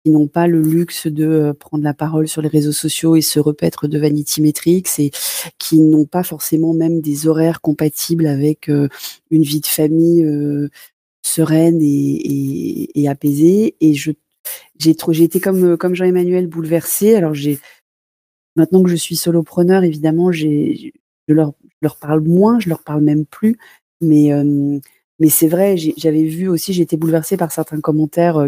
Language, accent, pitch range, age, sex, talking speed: French, French, 150-170 Hz, 30-49, female, 170 wpm